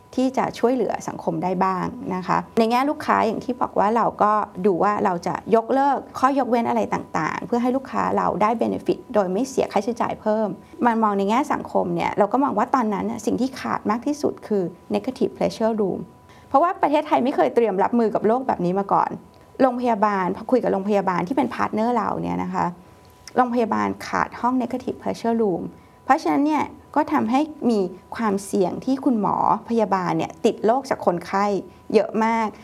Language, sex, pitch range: Thai, female, 200-260 Hz